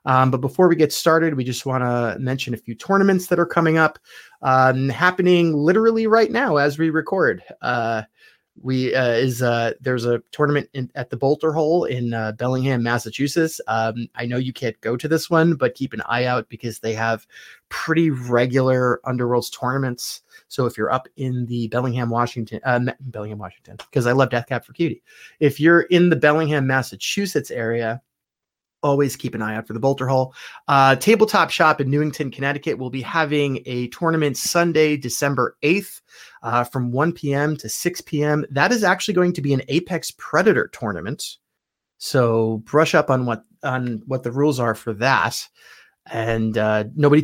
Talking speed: 180 wpm